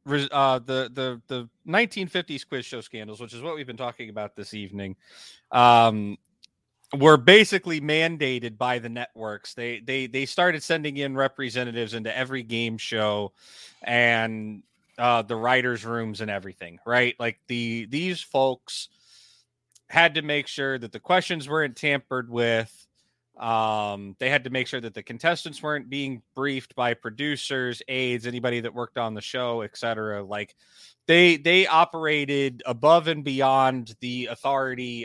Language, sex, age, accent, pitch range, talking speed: English, male, 30-49, American, 115-140 Hz, 150 wpm